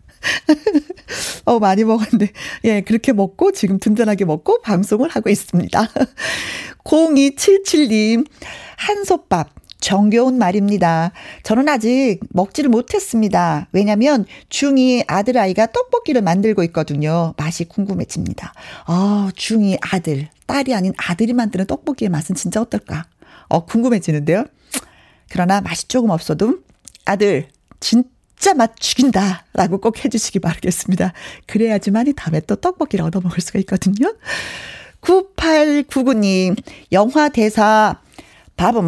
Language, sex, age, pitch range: Korean, female, 40-59, 185-255 Hz